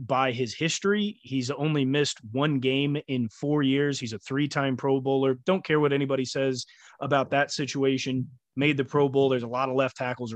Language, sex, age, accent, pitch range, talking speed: English, male, 30-49, American, 125-145 Hz, 195 wpm